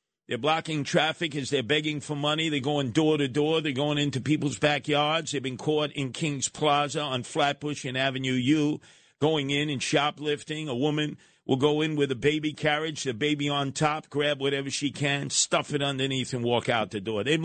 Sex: male